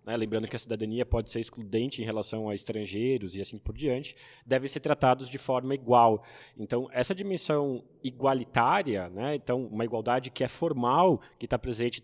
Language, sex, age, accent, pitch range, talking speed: Portuguese, male, 20-39, Brazilian, 115-140 Hz, 180 wpm